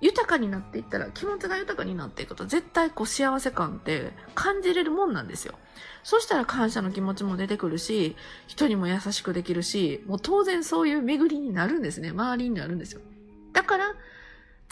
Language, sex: Japanese, female